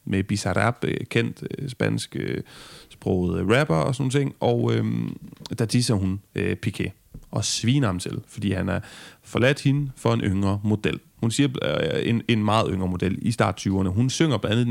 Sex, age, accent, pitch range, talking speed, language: male, 30-49, native, 105-135 Hz, 175 wpm, Danish